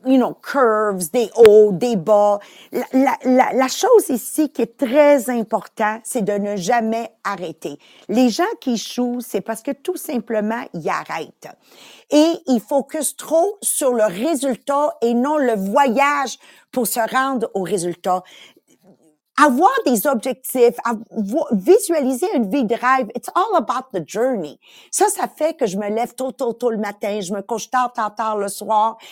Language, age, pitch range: English, 50-69, 210-280 Hz